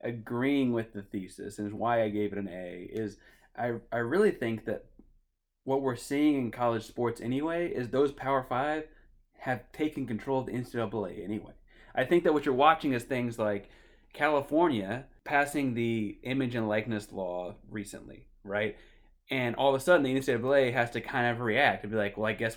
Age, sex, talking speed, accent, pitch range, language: 20-39, male, 190 wpm, American, 110-135 Hz, English